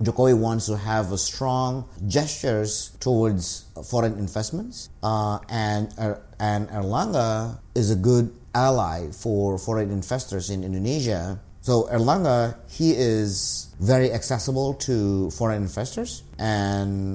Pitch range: 100-120 Hz